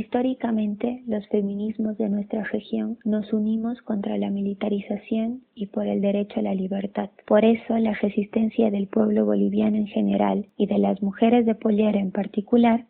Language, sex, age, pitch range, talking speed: Spanish, female, 20-39, 205-225 Hz, 165 wpm